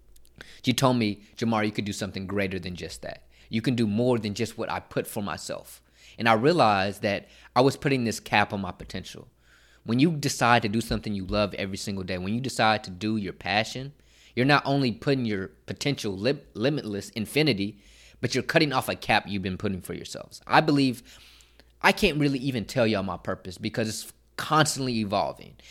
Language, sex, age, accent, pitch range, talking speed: English, male, 20-39, American, 100-125 Hz, 200 wpm